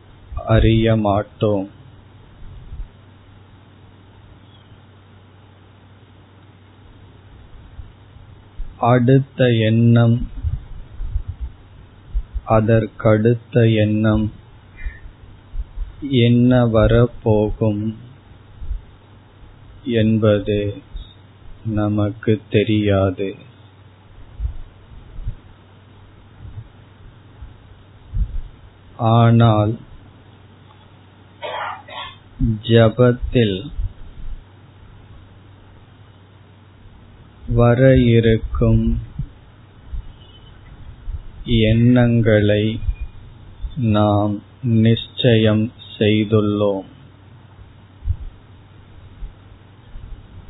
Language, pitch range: Tamil, 100-110 Hz